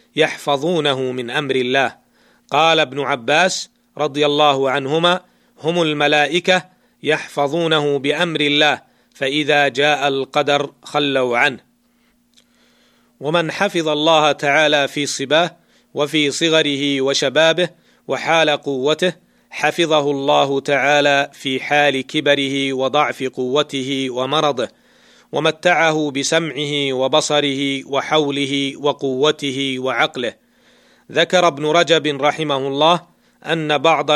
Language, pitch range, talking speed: Arabic, 140-160 Hz, 95 wpm